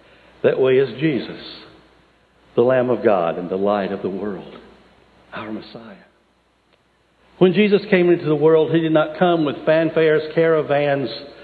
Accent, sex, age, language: American, male, 60-79, English